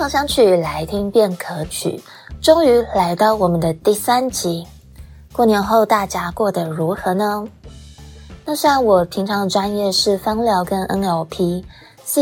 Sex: female